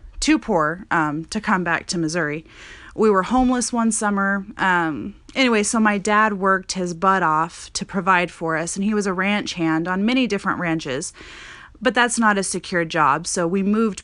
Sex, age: female, 30-49